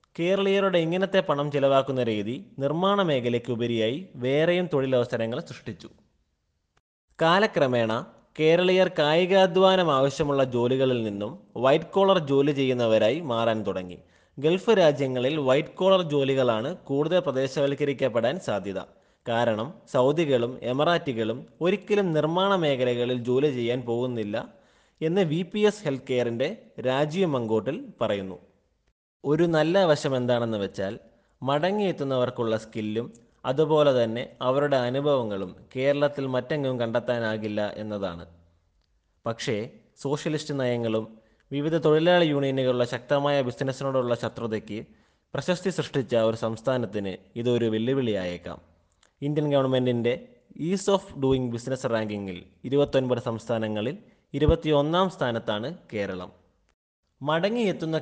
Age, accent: 20-39, native